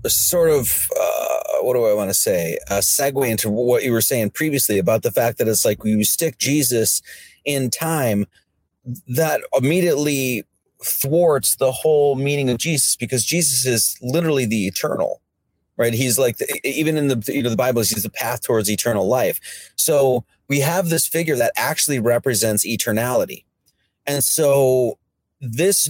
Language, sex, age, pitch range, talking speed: English, male, 30-49, 110-150 Hz, 160 wpm